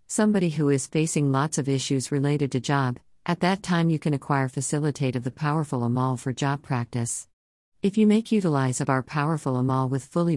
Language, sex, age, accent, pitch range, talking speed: English, female, 50-69, American, 130-155 Hz, 195 wpm